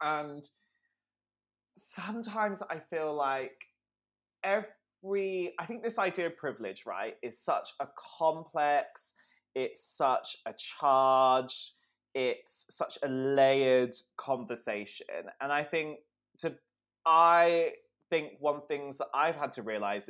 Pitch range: 120-160 Hz